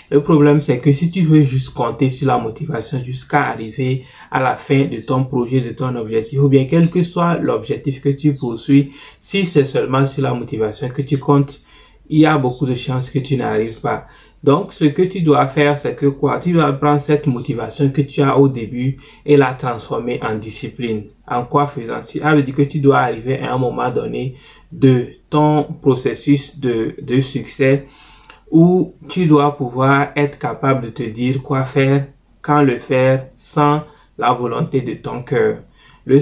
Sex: male